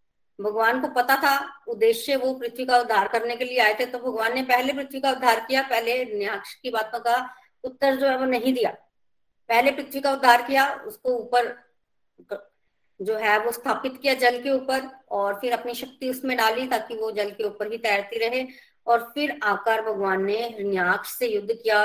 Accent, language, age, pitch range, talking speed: native, Hindi, 20-39, 215-270 Hz, 195 wpm